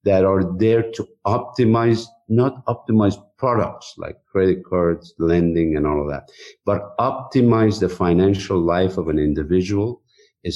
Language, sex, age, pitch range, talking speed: English, male, 50-69, 85-115 Hz, 140 wpm